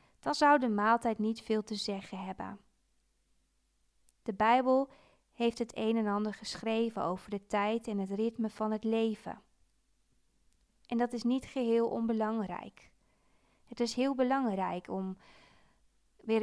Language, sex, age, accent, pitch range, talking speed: Dutch, female, 20-39, Dutch, 195-235 Hz, 140 wpm